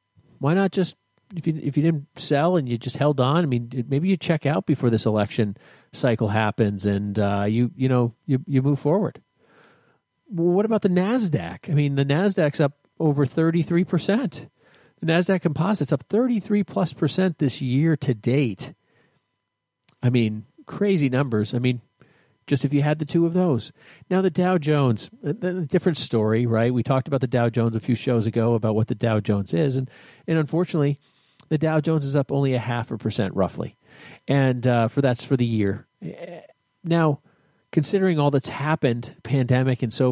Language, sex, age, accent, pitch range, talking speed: English, male, 40-59, American, 120-165 Hz, 185 wpm